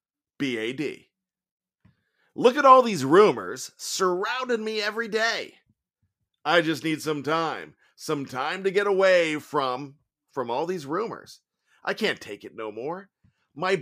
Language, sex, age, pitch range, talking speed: English, male, 50-69, 140-210 Hz, 140 wpm